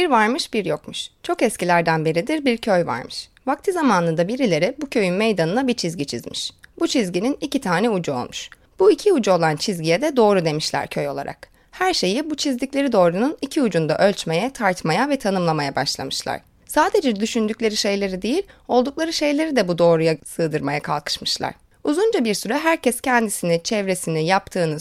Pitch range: 165-260 Hz